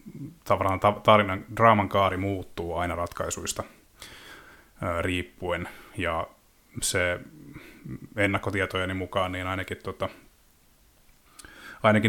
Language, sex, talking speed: Finnish, male, 90 wpm